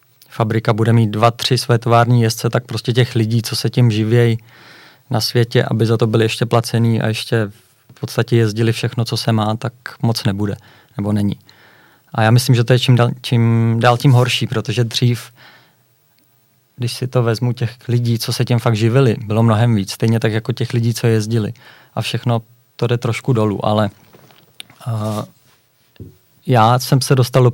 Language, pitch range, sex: Czech, 115-125 Hz, male